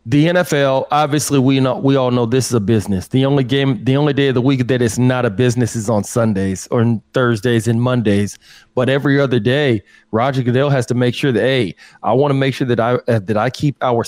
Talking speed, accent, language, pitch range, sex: 245 wpm, American, English, 120-140 Hz, male